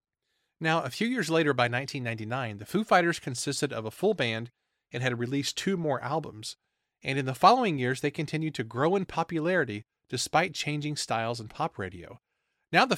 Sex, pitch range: male, 120-175 Hz